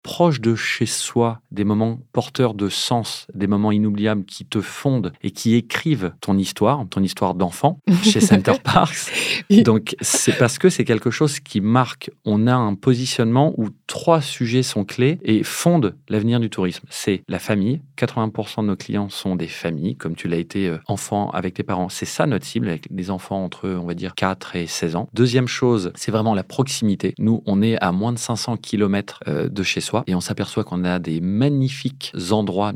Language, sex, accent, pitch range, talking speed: French, male, French, 95-120 Hz, 200 wpm